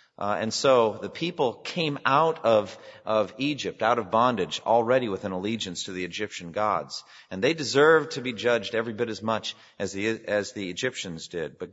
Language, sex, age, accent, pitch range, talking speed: English, male, 40-59, American, 105-145 Hz, 195 wpm